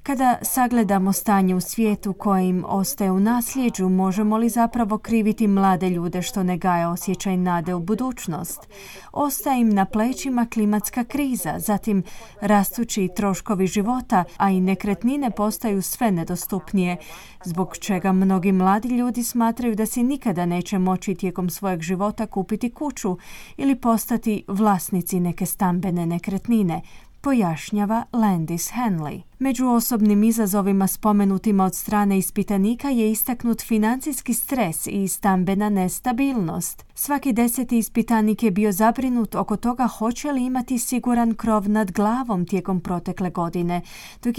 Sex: female